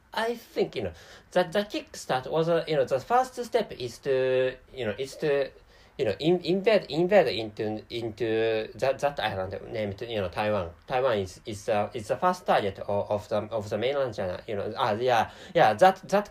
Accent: Japanese